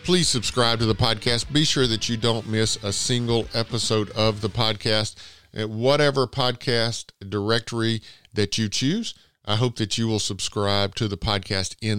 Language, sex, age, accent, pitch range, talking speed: English, male, 50-69, American, 100-125 Hz, 165 wpm